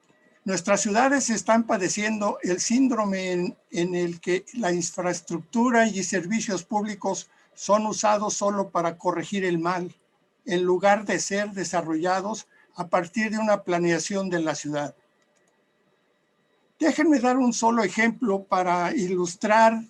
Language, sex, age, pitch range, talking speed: Spanish, male, 60-79, 180-215 Hz, 125 wpm